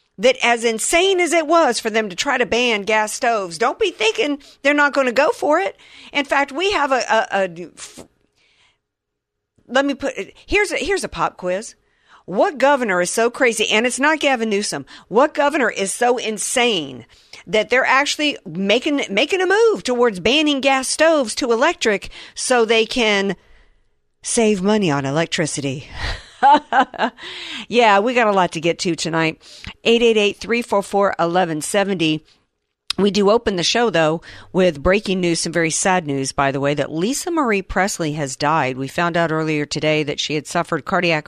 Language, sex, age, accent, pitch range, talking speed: English, female, 50-69, American, 160-235 Hz, 170 wpm